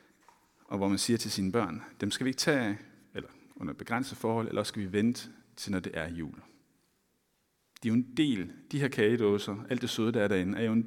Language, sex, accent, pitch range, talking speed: Danish, male, native, 100-120 Hz, 235 wpm